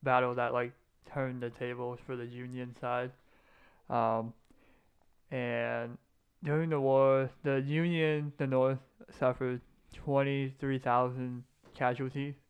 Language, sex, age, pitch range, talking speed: English, male, 20-39, 125-145 Hz, 105 wpm